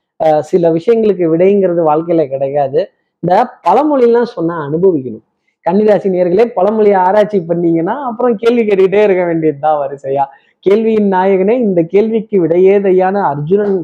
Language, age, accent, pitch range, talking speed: Tamil, 20-39, native, 165-210 Hz, 115 wpm